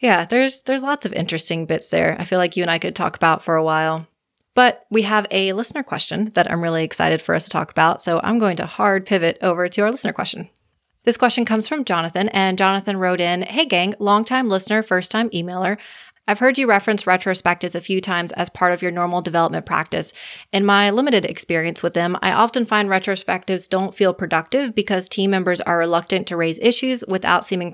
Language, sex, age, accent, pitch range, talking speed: English, female, 20-39, American, 175-210 Hz, 215 wpm